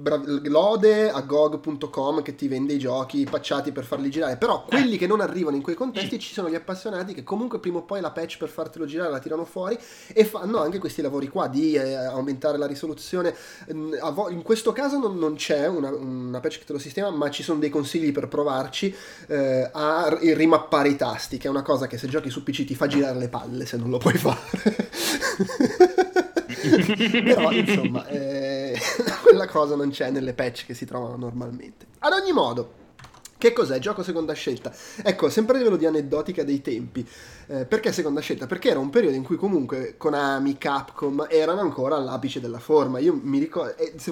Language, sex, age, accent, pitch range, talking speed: Italian, male, 30-49, native, 140-185 Hz, 190 wpm